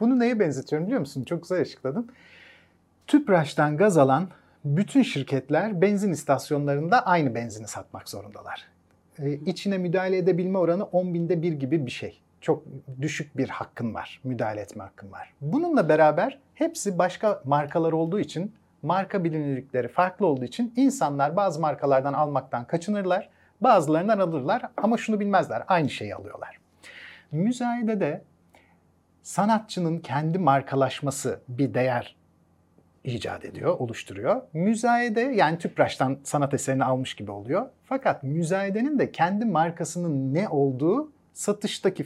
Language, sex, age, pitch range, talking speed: Turkish, male, 40-59, 135-185 Hz, 130 wpm